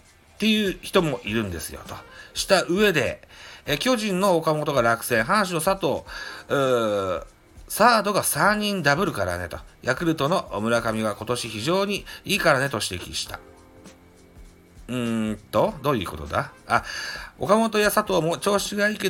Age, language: 40-59, Japanese